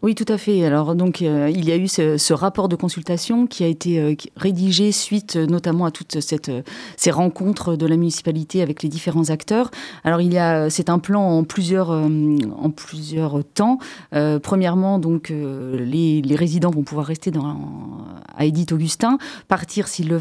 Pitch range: 155-195 Hz